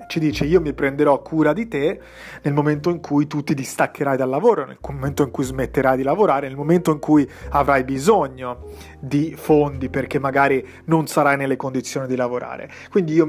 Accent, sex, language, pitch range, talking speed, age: native, male, Italian, 130-155 Hz, 190 wpm, 30-49